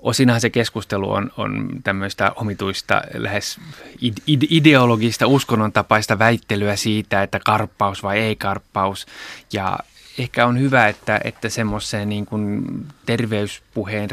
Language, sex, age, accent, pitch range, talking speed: Finnish, male, 20-39, native, 95-115 Hz, 110 wpm